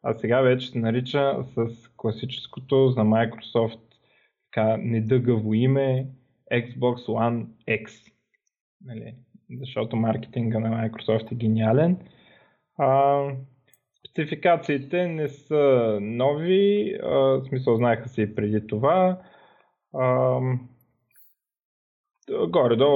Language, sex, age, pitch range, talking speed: Bulgarian, male, 20-39, 110-130 Hz, 85 wpm